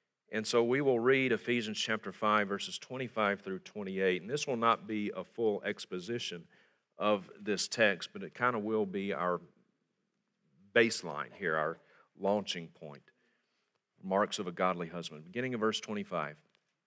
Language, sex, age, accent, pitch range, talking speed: English, male, 40-59, American, 90-110 Hz, 155 wpm